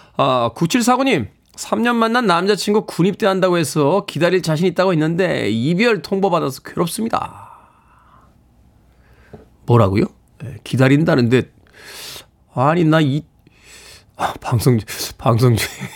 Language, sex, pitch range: Korean, male, 130-190 Hz